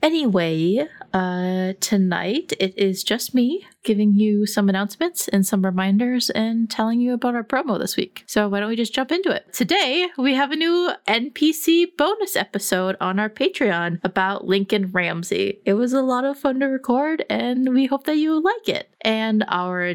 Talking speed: 185 wpm